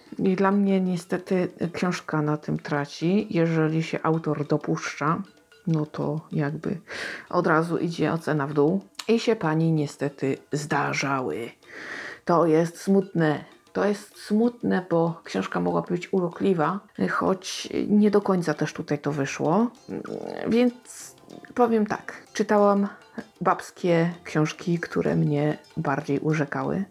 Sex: female